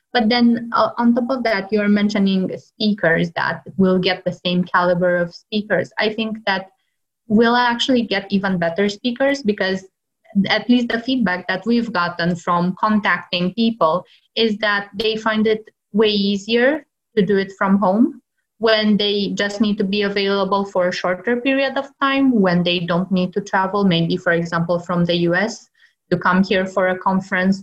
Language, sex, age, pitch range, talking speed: English, female, 20-39, 175-215 Hz, 175 wpm